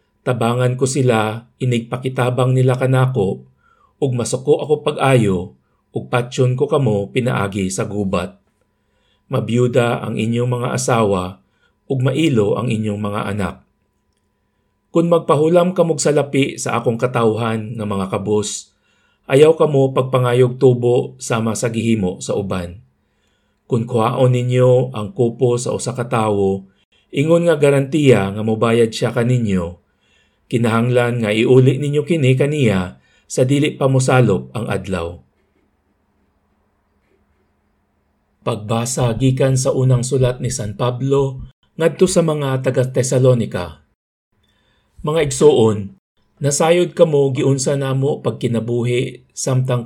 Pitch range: 105-130 Hz